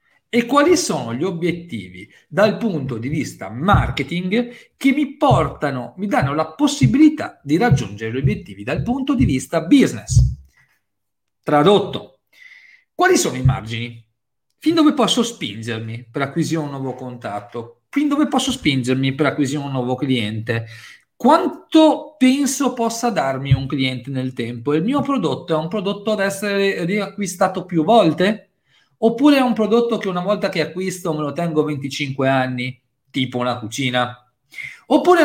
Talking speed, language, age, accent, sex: 145 wpm, Italian, 40-59, native, male